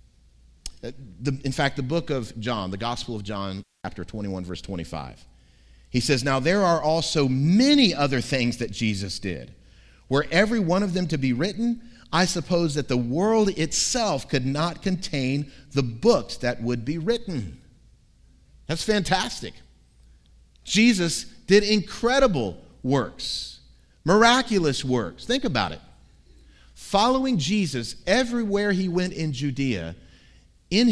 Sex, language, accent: male, English, American